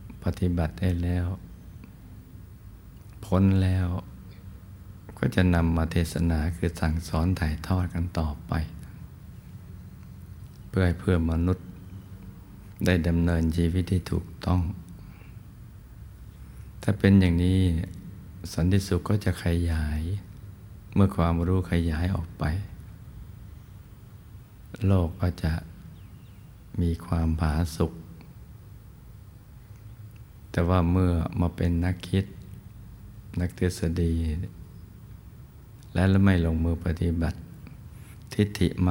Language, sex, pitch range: Thai, male, 85-95 Hz